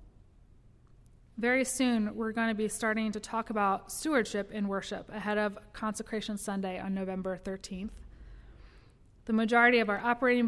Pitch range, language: 215-255 Hz, English